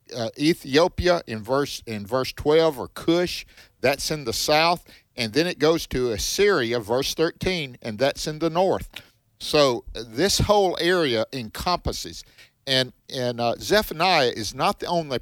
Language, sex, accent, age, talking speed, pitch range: English, male, American, 50-69, 155 wpm, 115-160 Hz